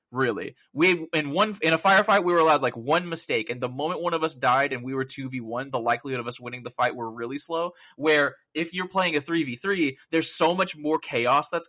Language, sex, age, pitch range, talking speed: English, male, 20-39, 130-170 Hz, 255 wpm